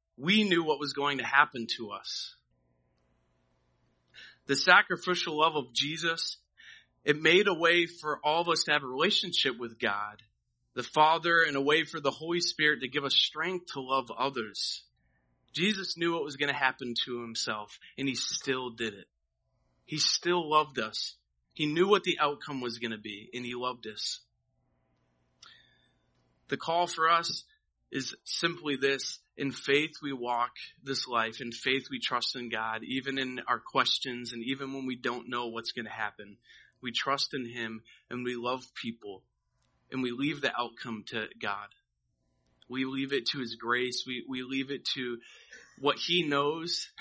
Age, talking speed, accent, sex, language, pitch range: 30-49, 175 wpm, American, male, English, 115-155 Hz